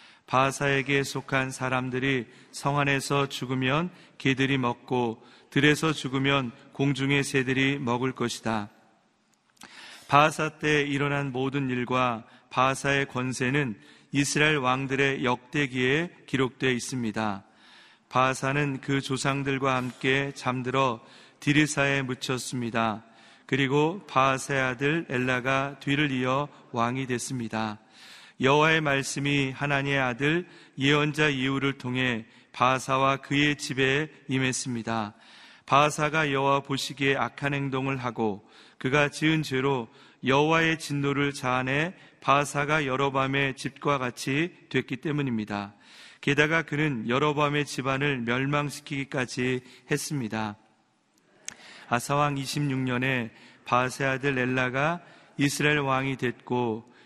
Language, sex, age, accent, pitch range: Korean, male, 40-59, native, 125-145 Hz